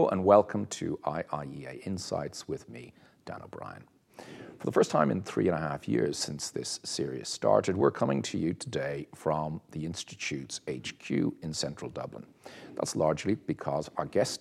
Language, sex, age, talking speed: English, male, 50-69, 165 wpm